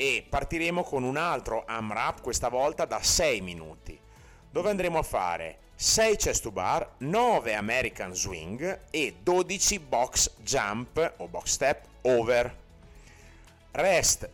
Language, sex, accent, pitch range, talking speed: Italian, male, native, 95-150 Hz, 135 wpm